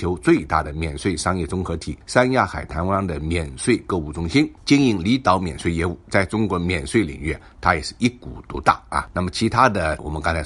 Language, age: Chinese, 50-69